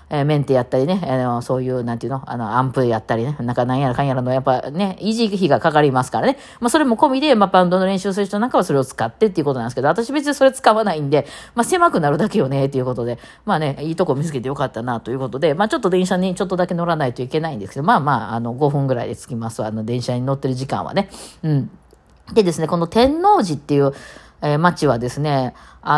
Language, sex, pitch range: Japanese, female, 130-205 Hz